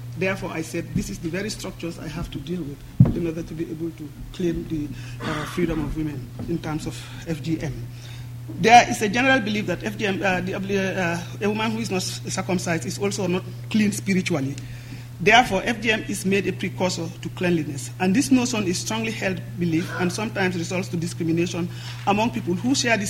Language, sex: English, male